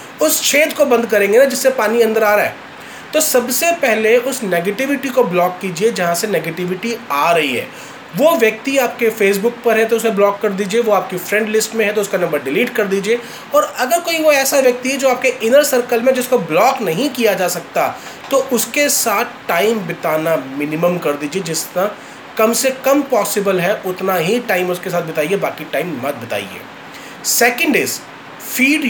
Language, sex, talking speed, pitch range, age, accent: Hindi, male, 195 wpm, 200-265 Hz, 30-49, native